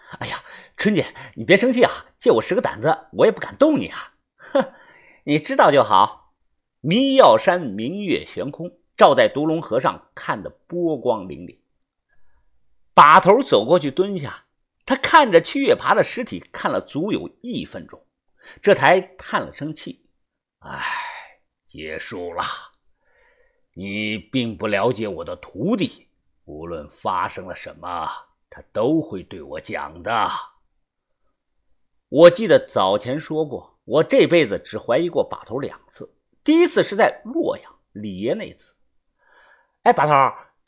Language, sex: Chinese, male